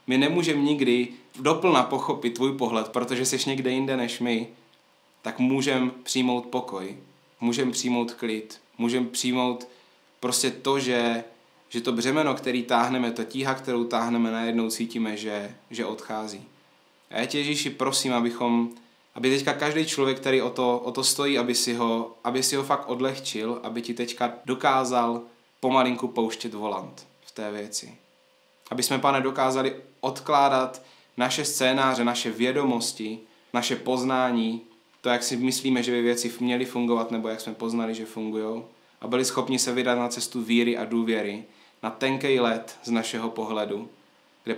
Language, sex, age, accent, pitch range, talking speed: Czech, male, 20-39, native, 115-130 Hz, 155 wpm